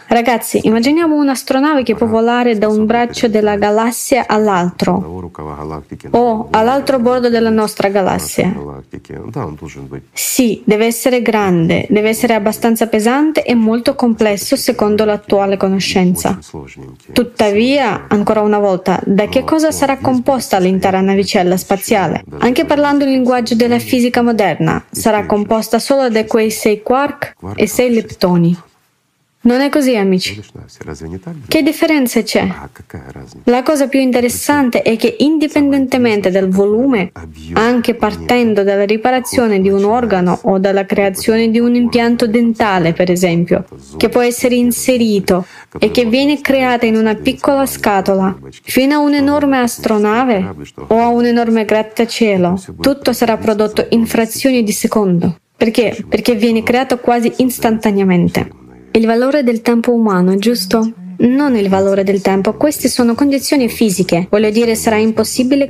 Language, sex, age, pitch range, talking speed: Italian, female, 20-39, 200-245 Hz, 135 wpm